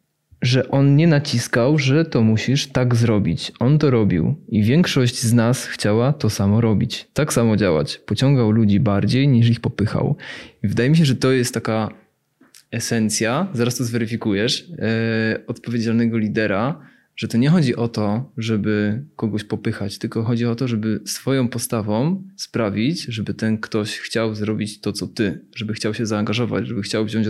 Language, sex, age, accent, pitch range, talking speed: Polish, male, 20-39, native, 110-125 Hz, 165 wpm